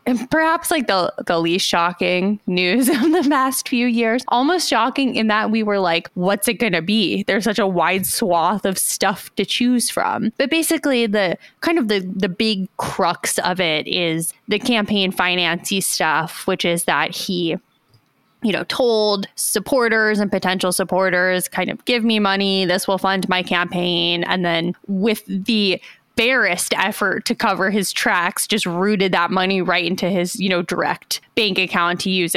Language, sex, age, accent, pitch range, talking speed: English, female, 20-39, American, 180-225 Hz, 175 wpm